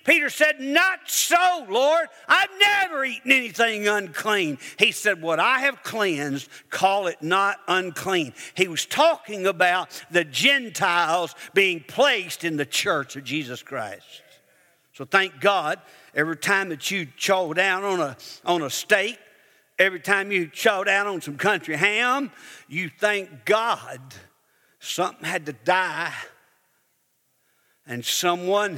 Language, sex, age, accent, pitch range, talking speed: English, male, 60-79, American, 150-210 Hz, 135 wpm